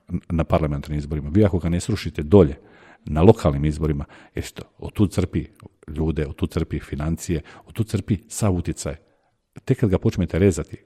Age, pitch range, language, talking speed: 40-59, 90-120 Hz, Croatian, 175 wpm